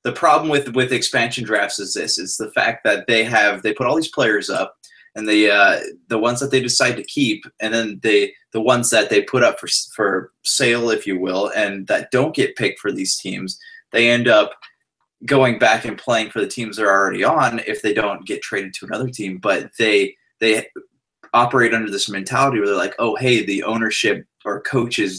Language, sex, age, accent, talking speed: English, male, 20-39, American, 215 wpm